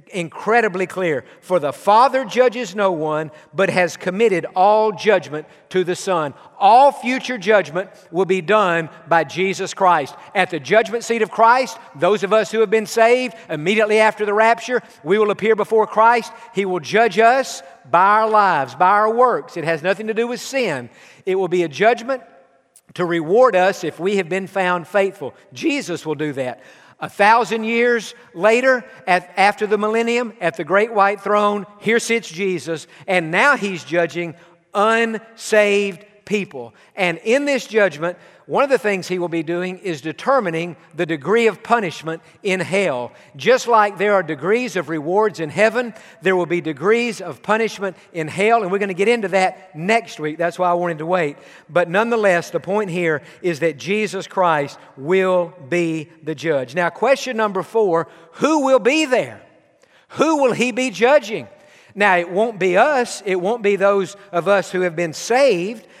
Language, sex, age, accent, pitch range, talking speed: English, male, 50-69, American, 175-225 Hz, 180 wpm